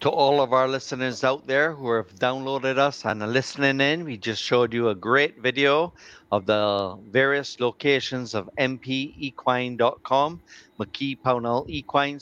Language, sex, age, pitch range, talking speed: English, male, 50-69, 120-150 Hz, 150 wpm